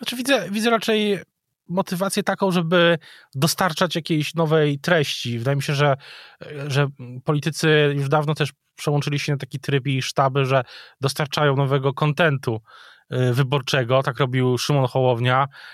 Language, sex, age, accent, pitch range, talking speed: Polish, male, 20-39, native, 130-160 Hz, 135 wpm